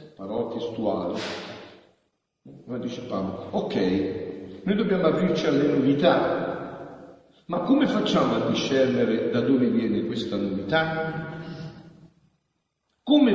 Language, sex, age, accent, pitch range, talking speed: Italian, male, 50-69, native, 115-160 Hz, 95 wpm